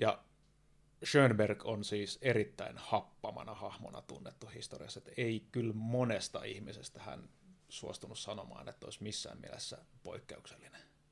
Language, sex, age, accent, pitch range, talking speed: Finnish, male, 30-49, native, 105-135 Hz, 120 wpm